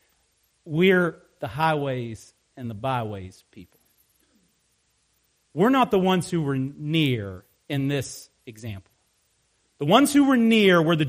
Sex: male